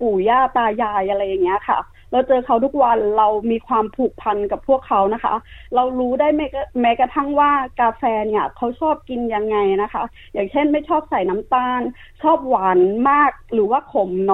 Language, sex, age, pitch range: Thai, female, 20-39, 220-285 Hz